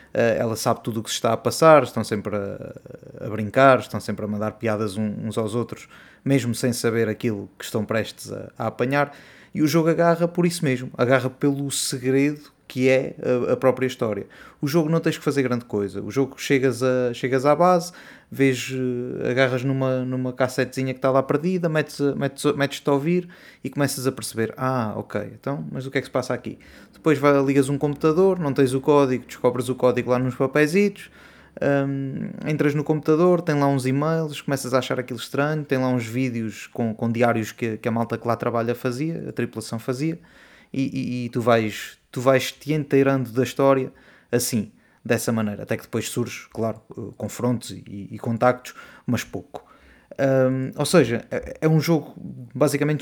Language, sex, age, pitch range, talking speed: Portuguese, male, 20-39, 120-140 Hz, 190 wpm